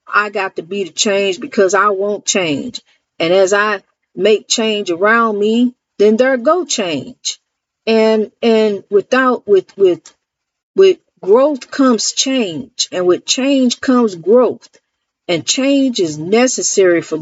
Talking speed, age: 140 wpm, 50-69